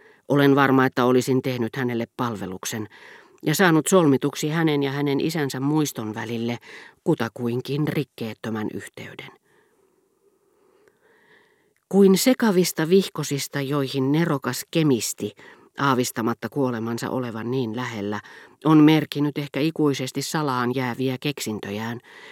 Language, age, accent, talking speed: Finnish, 40-59, native, 100 wpm